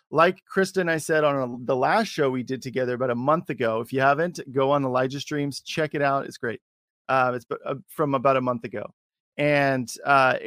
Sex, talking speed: male, 220 wpm